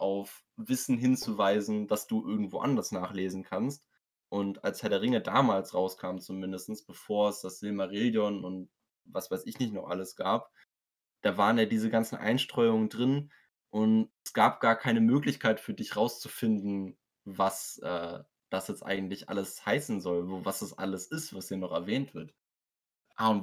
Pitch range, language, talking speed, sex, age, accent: 95-120 Hz, German, 165 wpm, male, 20-39, German